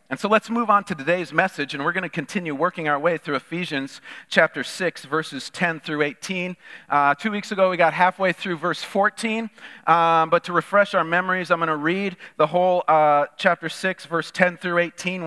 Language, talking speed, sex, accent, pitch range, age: English, 210 wpm, male, American, 150-195 Hz, 40-59